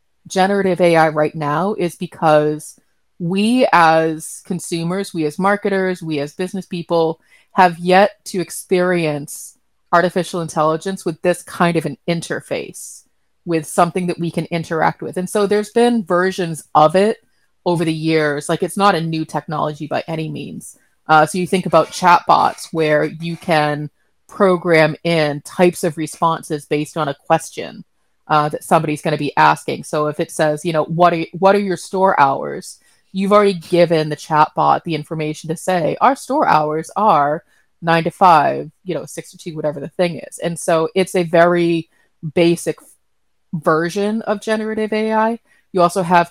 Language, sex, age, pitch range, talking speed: English, female, 30-49, 155-185 Hz, 170 wpm